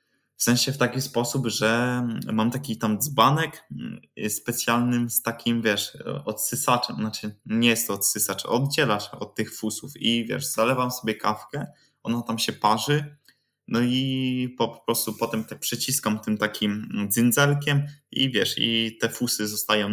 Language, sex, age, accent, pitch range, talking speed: Polish, male, 20-39, native, 105-120 Hz, 150 wpm